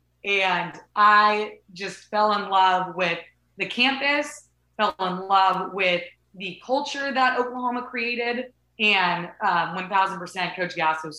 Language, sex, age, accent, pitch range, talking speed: English, female, 20-39, American, 180-220 Hz, 135 wpm